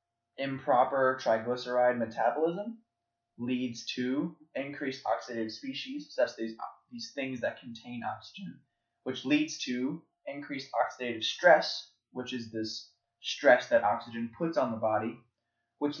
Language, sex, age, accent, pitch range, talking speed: English, male, 20-39, American, 115-150 Hz, 120 wpm